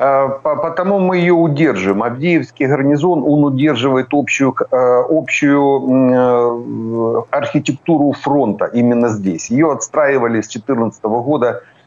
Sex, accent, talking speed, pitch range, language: male, native, 95 wpm, 110-130 Hz, Ukrainian